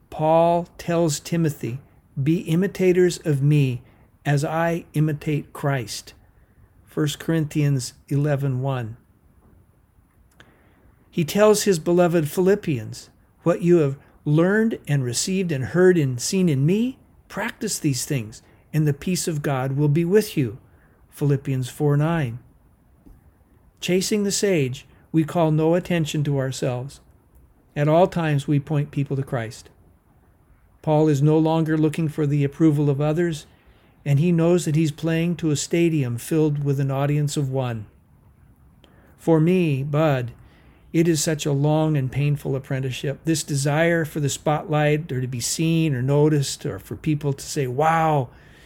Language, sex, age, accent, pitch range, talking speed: English, male, 50-69, American, 135-165 Hz, 145 wpm